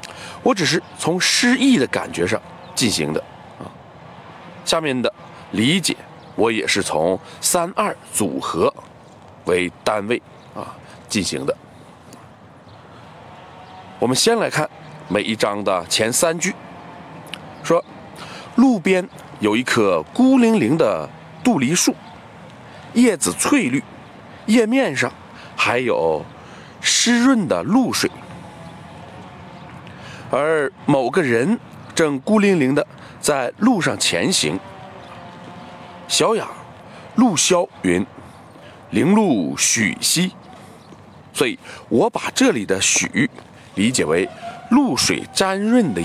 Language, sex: Chinese, male